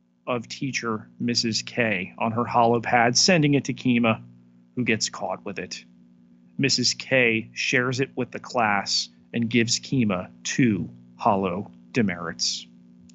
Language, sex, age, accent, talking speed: English, male, 40-59, American, 135 wpm